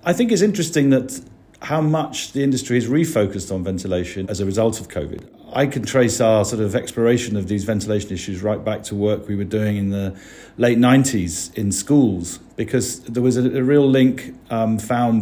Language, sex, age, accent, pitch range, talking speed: English, male, 40-59, British, 100-125 Hz, 200 wpm